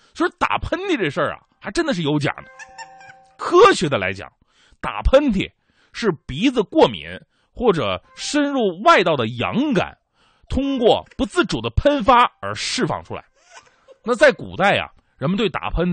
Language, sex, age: Chinese, male, 30-49